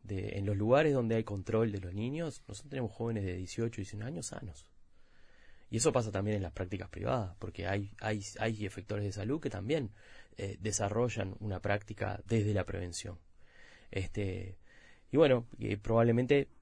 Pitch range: 100-115 Hz